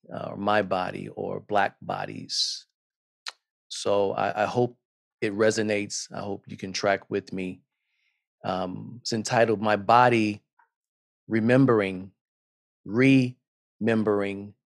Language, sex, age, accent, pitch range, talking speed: English, male, 40-59, American, 110-135 Hz, 110 wpm